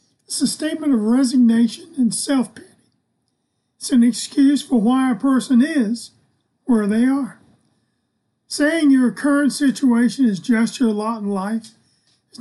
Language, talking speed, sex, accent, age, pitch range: English, 140 wpm, male, American, 40-59, 220-260 Hz